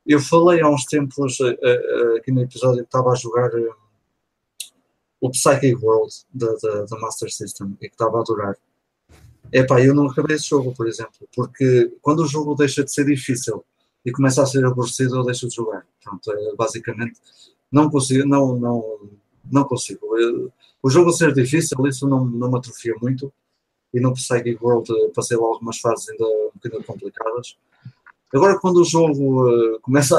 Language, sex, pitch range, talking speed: Portuguese, male, 115-145 Hz, 170 wpm